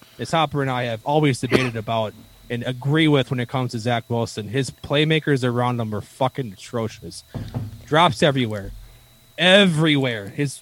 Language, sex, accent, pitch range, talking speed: English, male, American, 115-140 Hz, 160 wpm